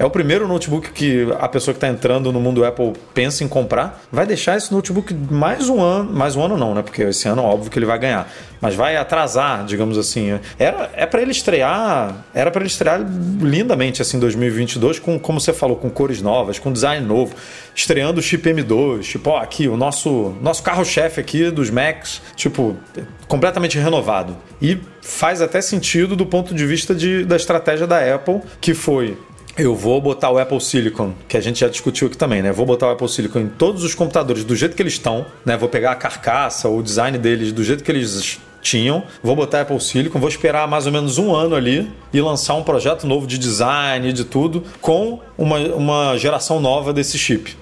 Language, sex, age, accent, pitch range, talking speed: Portuguese, male, 30-49, Brazilian, 120-165 Hz, 215 wpm